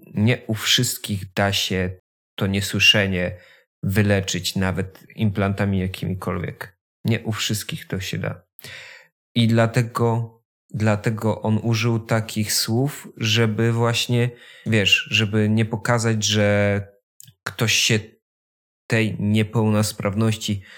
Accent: native